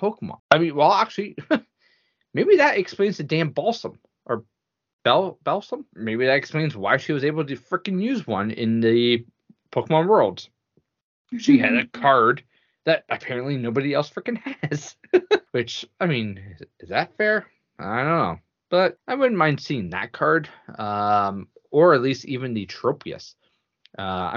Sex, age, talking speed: male, 20-39, 155 wpm